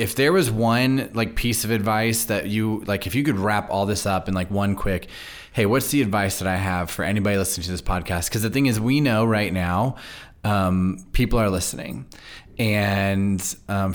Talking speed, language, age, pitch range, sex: 210 wpm, English, 20-39, 95-110 Hz, male